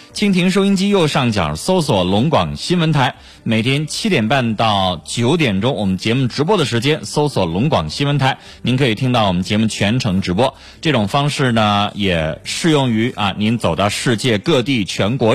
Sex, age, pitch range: male, 30-49, 100-145 Hz